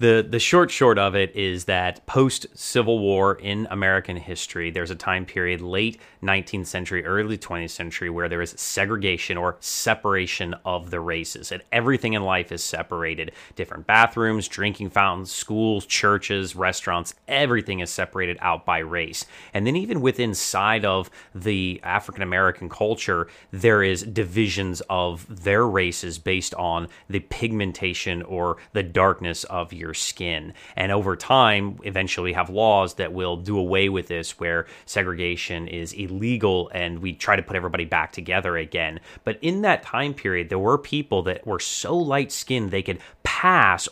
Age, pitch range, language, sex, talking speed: 30-49, 90-105 Hz, English, male, 165 wpm